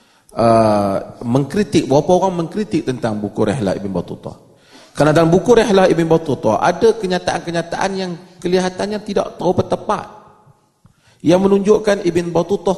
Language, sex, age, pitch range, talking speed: Malay, male, 30-49, 130-185 Hz, 125 wpm